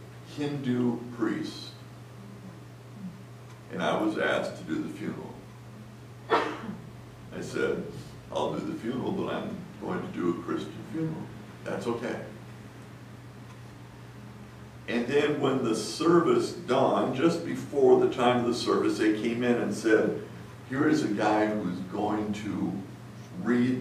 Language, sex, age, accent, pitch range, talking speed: English, male, 60-79, American, 100-125 Hz, 135 wpm